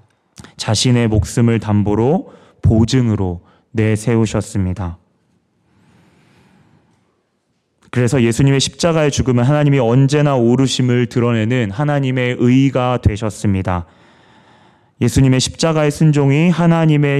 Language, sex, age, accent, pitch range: Korean, male, 30-49, native, 110-140 Hz